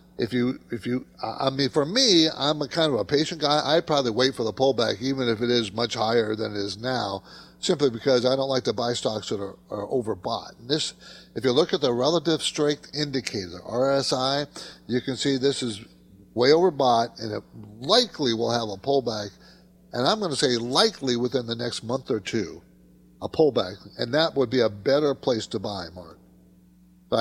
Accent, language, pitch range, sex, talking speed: American, English, 105-150 Hz, male, 205 wpm